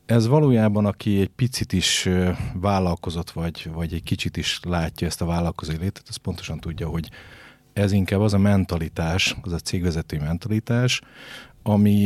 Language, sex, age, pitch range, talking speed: Hungarian, male, 30-49, 85-105 Hz, 155 wpm